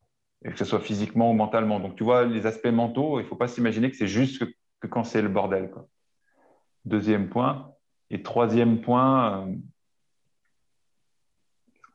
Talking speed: 170 wpm